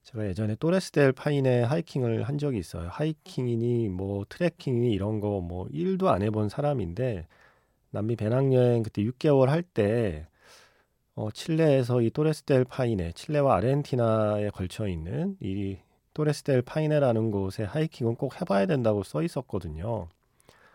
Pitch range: 100-140 Hz